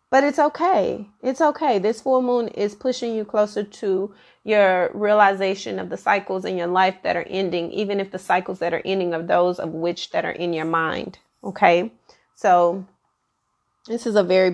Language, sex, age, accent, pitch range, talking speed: English, female, 30-49, American, 175-210 Hz, 190 wpm